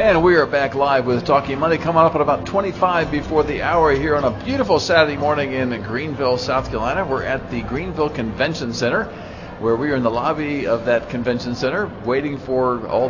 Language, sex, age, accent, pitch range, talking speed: English, male, 50-69, American, 110-145 Hz, 205 wpm